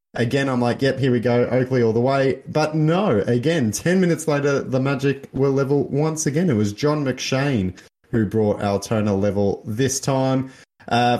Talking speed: 180 wpm